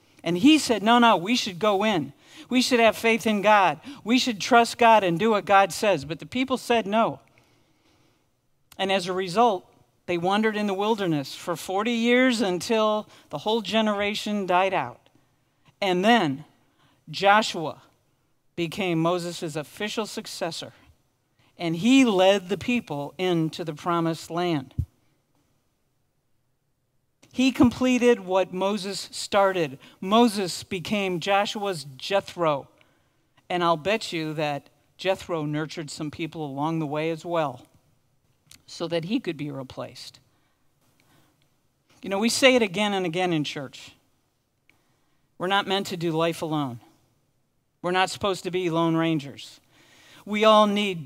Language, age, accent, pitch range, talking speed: English, 50-69, American, 145-210 Hz, 140 wpm